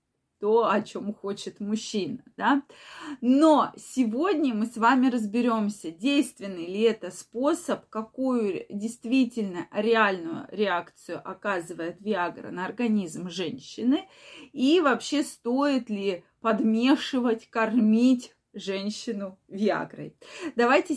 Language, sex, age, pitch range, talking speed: Russian, female, 20-39, 210-270 Hz, 95 wpm